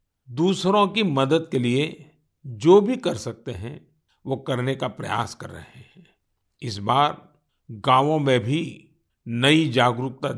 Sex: male